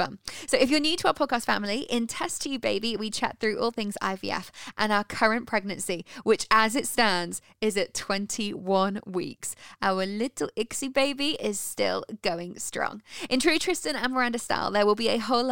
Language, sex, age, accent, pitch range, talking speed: English, female, 10-29, British, 200-265 Hz, 195 wpm